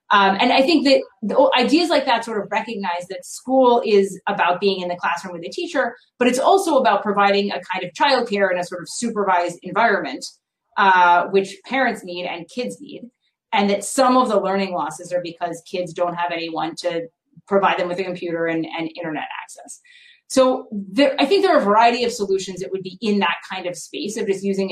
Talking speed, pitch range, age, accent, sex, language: 215 wpm, 175-235 Hz, 30-49, American, female, English